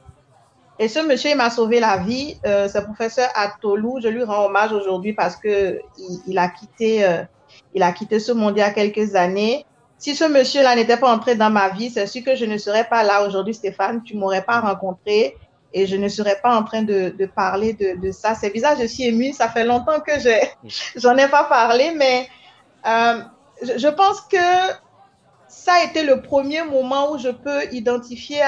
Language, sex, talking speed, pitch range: French, female, 215 wpm, 210-265 Hz